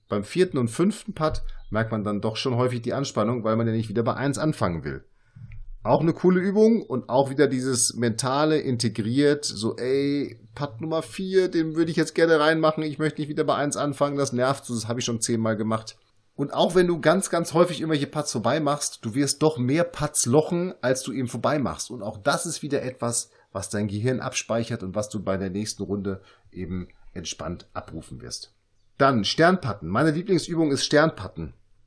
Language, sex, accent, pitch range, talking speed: German, male, German, 115-155 Hz, 200 wpm